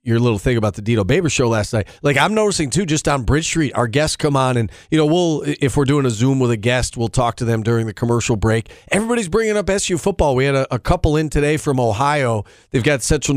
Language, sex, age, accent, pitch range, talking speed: English, male, 40-59, American, 120-155 Hz, 265 wpm